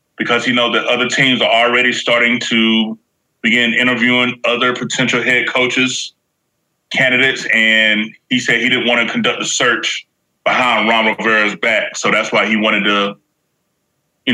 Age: 20-39